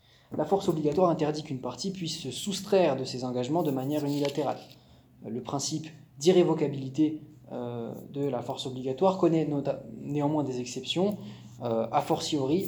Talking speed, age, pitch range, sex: 135 wpm, 20-39, 125-165 Hz, male